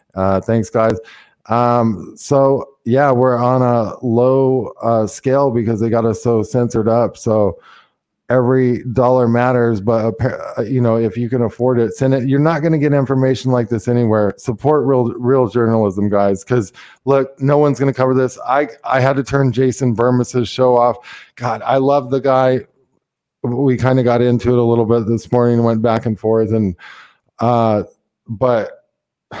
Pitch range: 115-135 Hz